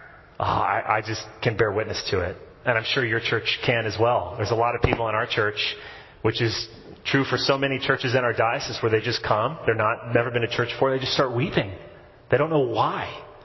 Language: English